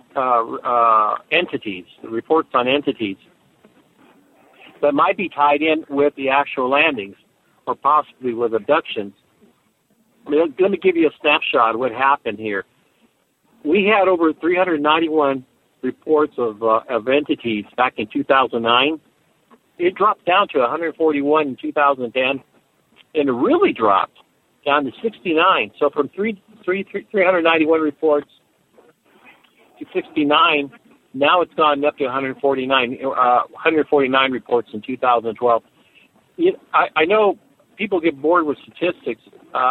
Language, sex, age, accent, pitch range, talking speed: English, male, 60-79, American, 130-175 Hz, 130 wpm